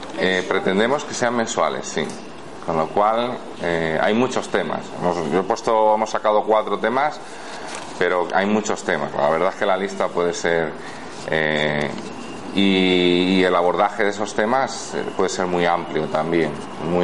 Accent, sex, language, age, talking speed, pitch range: Spanish, male, Spanish, 40-59, 160 wpm, 90-125 Hz